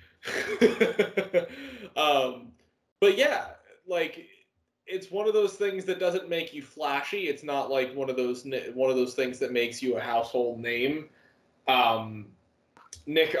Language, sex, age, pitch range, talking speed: English, male, 20-39, 120-170 Hz, 145 wpm